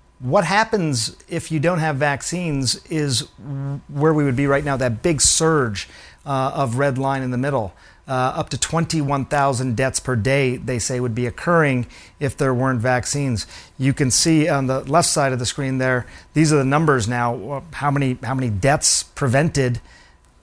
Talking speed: 180 wpm